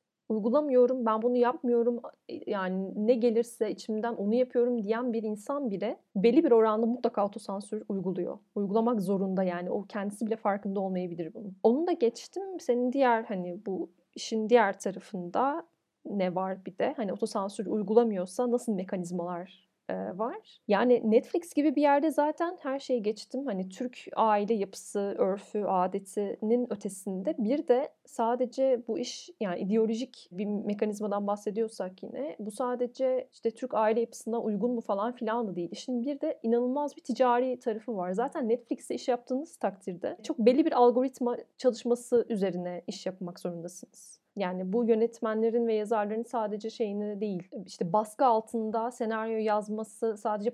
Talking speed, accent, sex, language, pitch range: 145 wpm, native, female, Turkish, 195-245 Hz